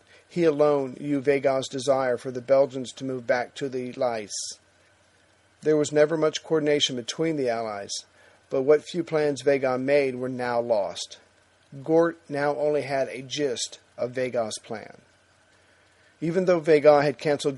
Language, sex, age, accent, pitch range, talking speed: English, male, 50-69, American, 125-150 Hz, 155 wpm